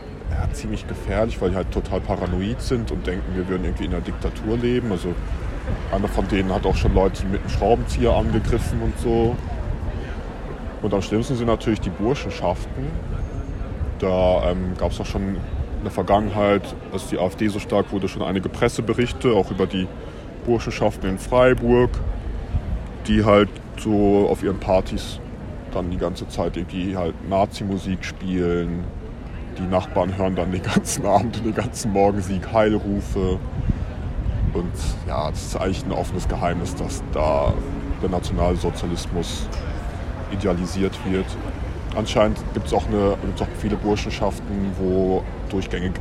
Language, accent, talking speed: German, German, 140 wpm